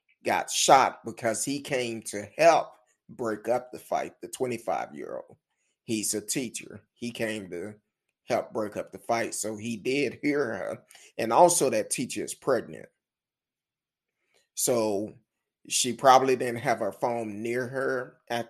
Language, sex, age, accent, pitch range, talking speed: English, male, 30-49, American, 110-140 Hz, 150 wpm